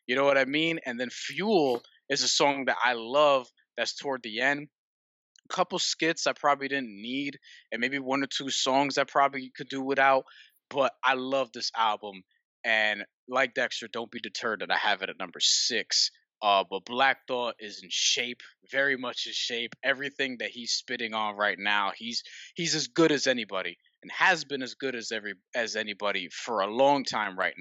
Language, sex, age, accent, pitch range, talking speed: English, male, 20-39, American, 120-145 Hz, 200 wpm